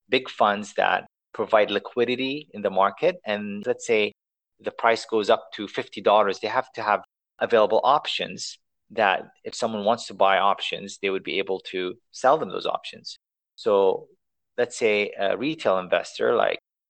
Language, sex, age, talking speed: English, male, 30-49, 165 wpm